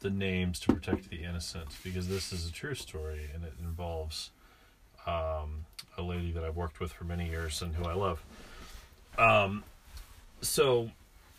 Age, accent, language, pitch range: 30-49, American, English, 85-100 Hz